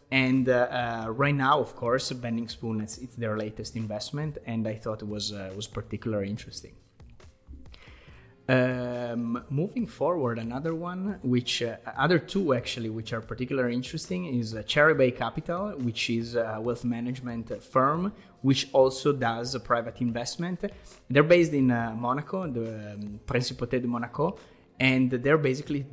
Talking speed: 155 wpm